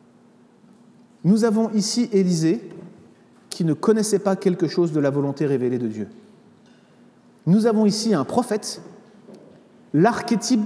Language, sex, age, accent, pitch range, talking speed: French, male, 30-49, French, 150-210 Hz, 125 wpm